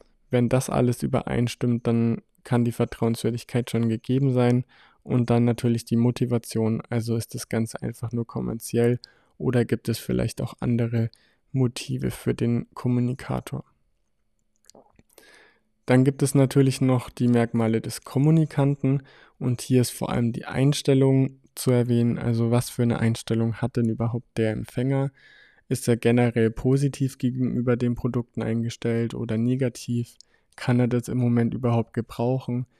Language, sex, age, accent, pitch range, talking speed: German, male, 20-39, German, 115-125 Hz, 145 wpm